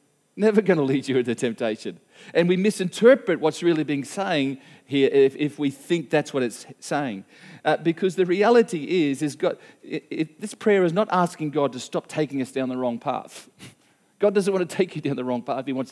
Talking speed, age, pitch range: 220 wpm, 40-59, 145-195 Hz